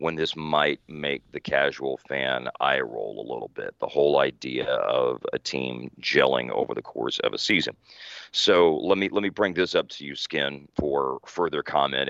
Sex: male